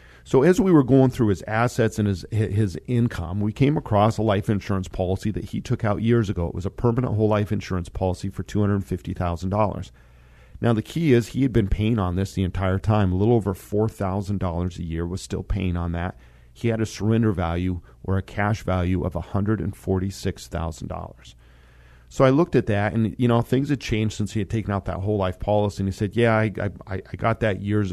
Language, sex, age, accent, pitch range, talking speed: English, male, 40-59, American, 90-110 Hz, 215 wpm